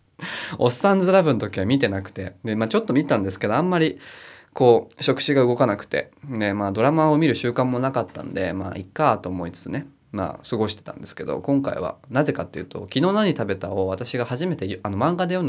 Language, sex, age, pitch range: Japanese, male, 20-39, 95-145 Hz